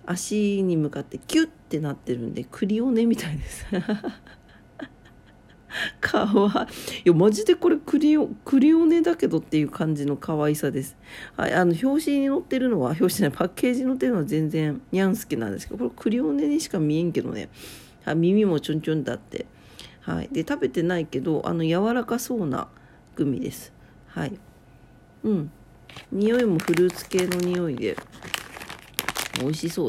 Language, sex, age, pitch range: Japanese, female, 40-59, 155-210 Hz